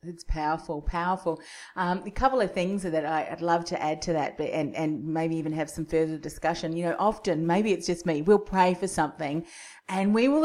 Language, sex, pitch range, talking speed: English, female, 165-210 Hz, 210 wpm